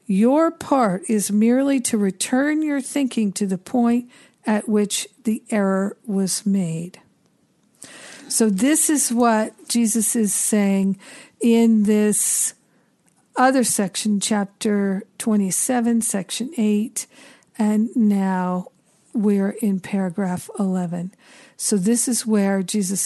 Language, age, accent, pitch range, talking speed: English, 50-69, American, 195-240 Hz, 110 wpm